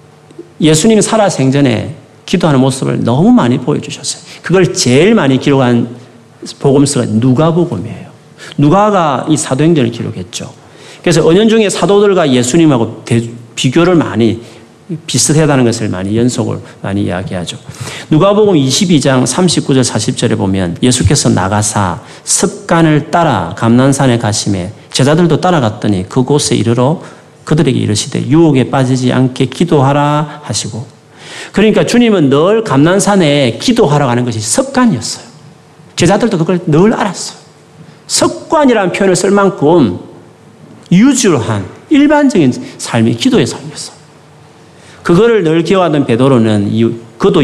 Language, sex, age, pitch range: Korean, male, 40-59, 120-175 Hz